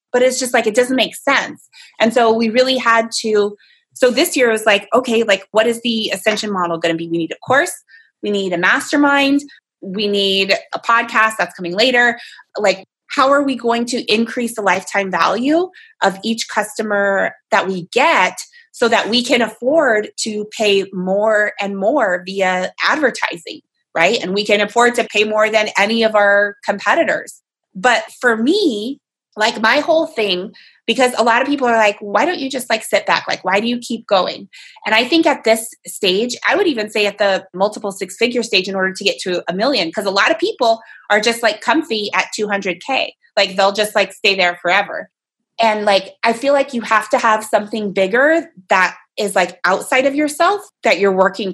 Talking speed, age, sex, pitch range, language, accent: 205 wpm, 20-39, female, 200-250 Hz, English, American